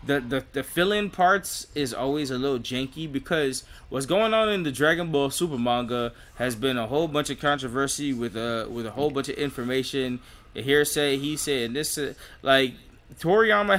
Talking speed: 200 wpm